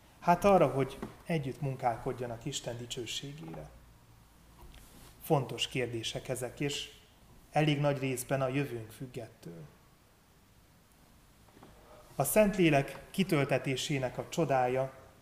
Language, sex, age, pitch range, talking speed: Hungarian, male, 30-49, 125-145 Hz, 85 wpm